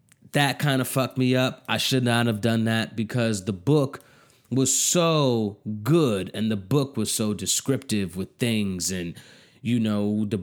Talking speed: 175 wpm